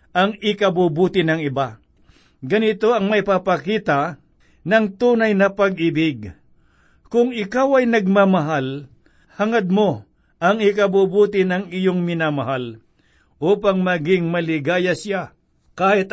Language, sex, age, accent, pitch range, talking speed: Filipino, male, 60-79, native, 160-200 Hz, 105 wpm